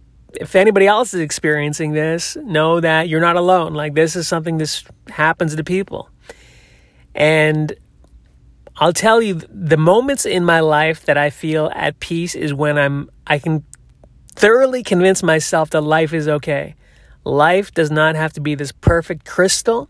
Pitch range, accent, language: 145-175 Hz, American, English